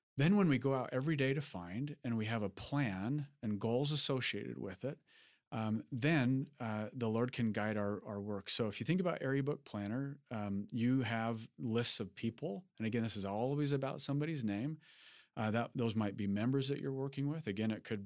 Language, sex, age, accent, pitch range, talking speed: English, male, 40-59, American, 110-135 Hz, 215 wpm